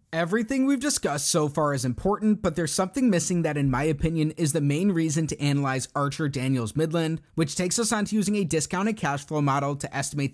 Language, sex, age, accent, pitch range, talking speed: English, male, 30-49, American, 150-185 Hz, 215 wpm